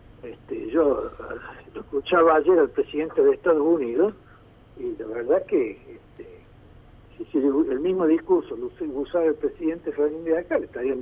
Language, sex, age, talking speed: Spanish, male, 60-79, 160 wpm